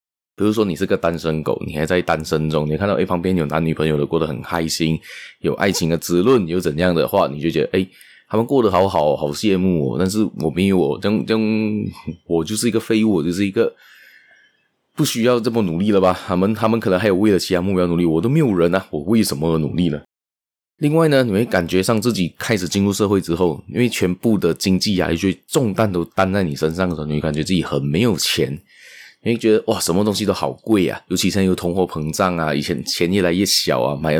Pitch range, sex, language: 80-105 Hz, male, Chinese